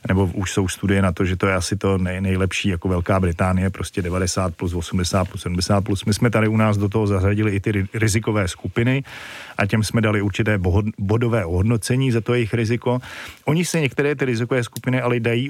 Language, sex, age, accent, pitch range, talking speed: Czech, male, 40-59, native, 100-120 Hz, 210 wpm